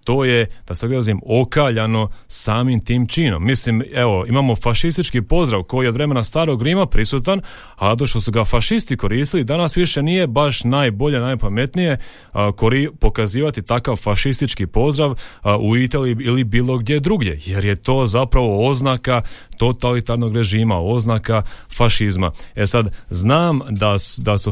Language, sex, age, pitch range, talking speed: Croatian, male, 30-49, 105-135 Hz, 150 wpm